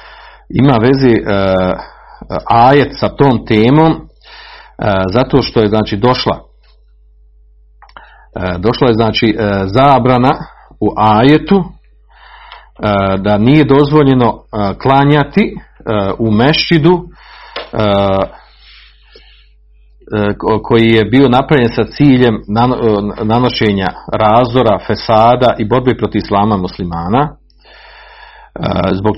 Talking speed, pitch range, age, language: 95 wpm, 105-145 Hz, 40-59, Croatian